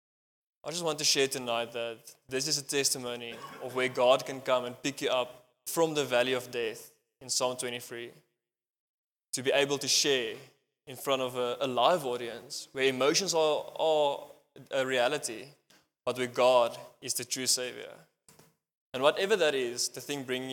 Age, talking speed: 20-39, 170 wpm